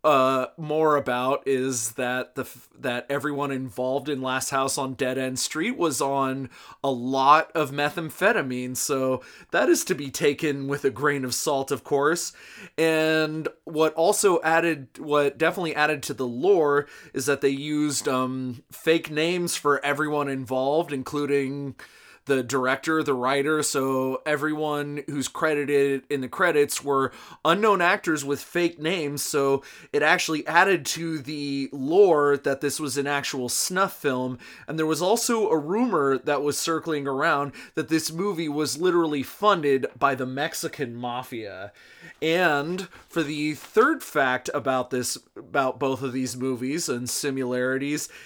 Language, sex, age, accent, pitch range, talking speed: English, male, 20-39, American, 135-160 Hz, 150 wpm